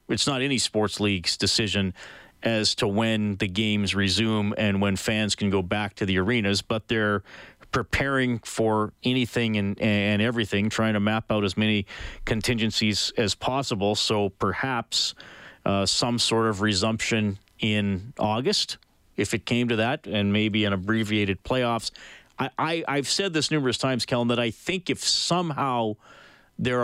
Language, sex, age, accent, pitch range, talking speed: English, male, 40-59, American, 100-120 Hz, 155 wpm